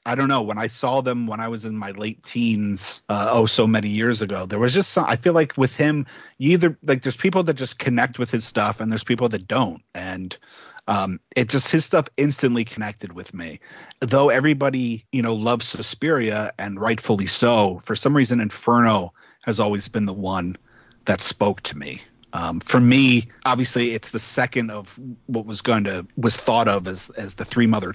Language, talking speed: English, 210 wpm